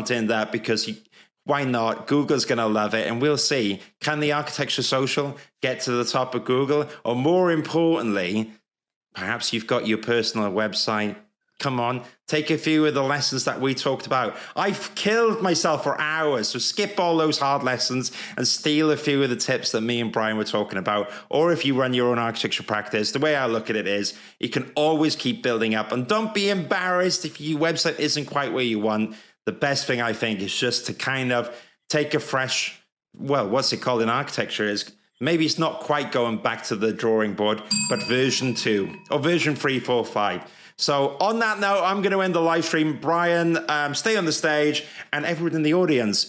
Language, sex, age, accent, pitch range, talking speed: English, male, 30-49, British, 115-155 Hz, 205 wpm